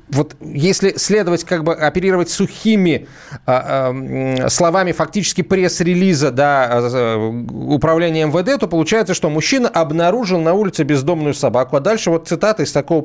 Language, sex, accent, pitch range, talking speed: Russian, male, native, 130-180 Hz, 130 wpm